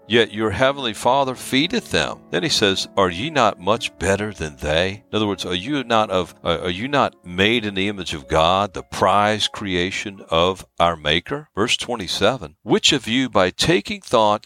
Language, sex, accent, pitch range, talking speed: English, male, American, 85-105 Hz, 200 wpm